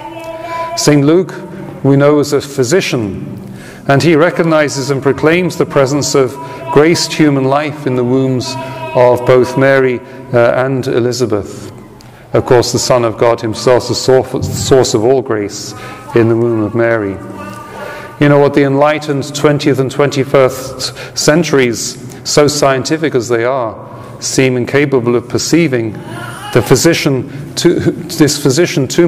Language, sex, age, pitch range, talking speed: English, male, 40-59, 110-140 Hz, 140 wpm